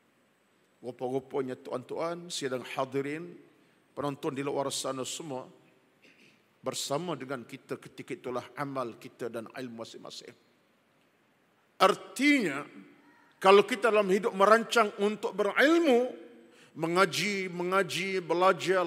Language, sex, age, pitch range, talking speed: Malay, male, 50-69, 130-165 Hz, 95 wpm